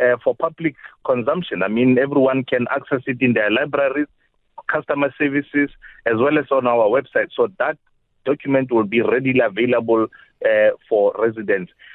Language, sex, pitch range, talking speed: English, male, 120-160 Hz, 155 wpm